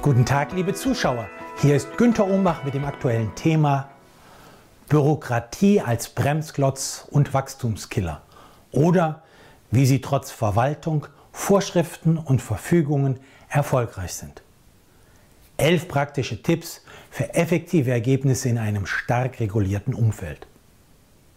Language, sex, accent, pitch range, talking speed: German, male, German, 120-155 Hz, 105 wpm